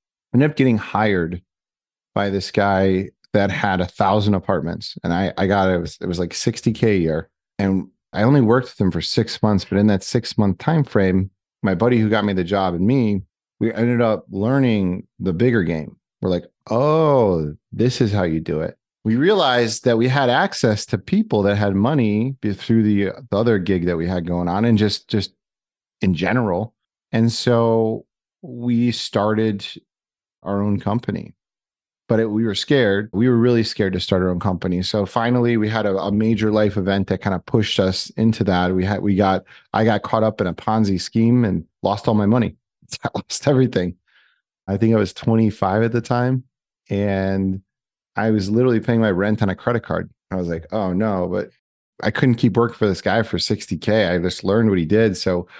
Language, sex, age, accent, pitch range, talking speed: English, male, 30-49, American, 95-115 Hz, 205 wpm